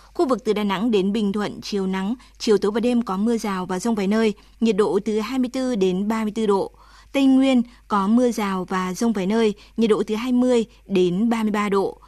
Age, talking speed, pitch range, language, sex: 20-39, 220 wpm, 195-235 Hz, Vietnamese, female